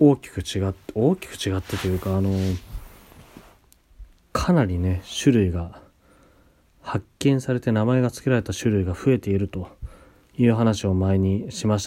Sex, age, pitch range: male, 30-49, 95-110 Hz